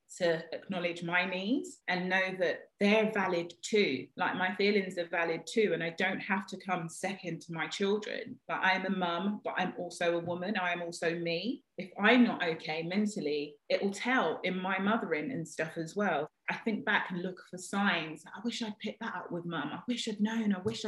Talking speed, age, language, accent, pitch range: 220 wpm, 30-49, English, British, 170-225 Hz